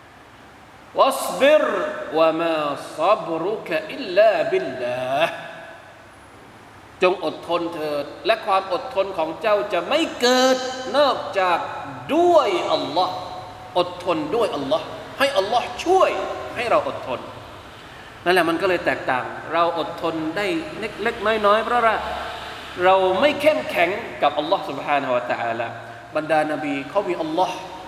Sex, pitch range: male, 160-260 Hz